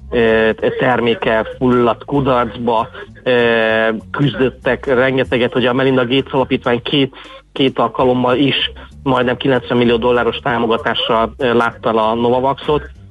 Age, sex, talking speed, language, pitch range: 30-49, male, 100 wpm, Hungarian, 110-135 Hz